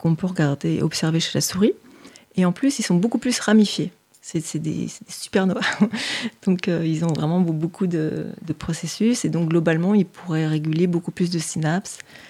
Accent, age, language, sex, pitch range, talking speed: French, 30-49, French, female, 160-200 Hz, 190 wpm